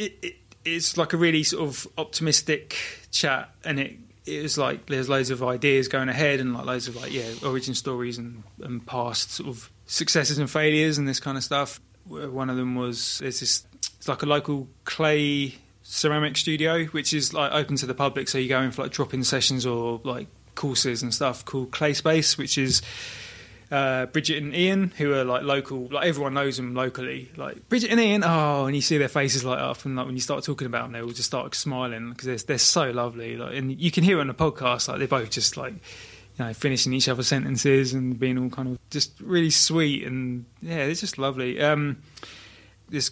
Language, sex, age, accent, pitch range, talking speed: English, male, 20-39, British, 125-150 Hz, 220 wpm